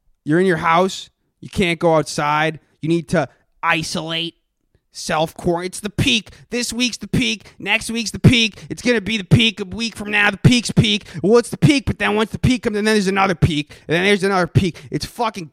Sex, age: male, 20-39